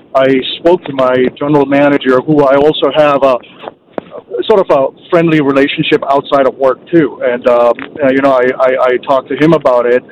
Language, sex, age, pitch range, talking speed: English, male, 40-59, 130-150 Hz, 195 wpm